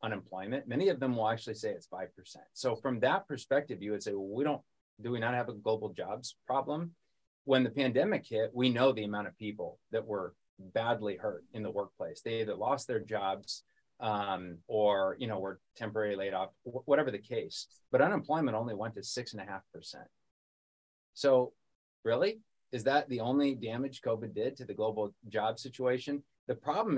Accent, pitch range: American, 105-135 Hz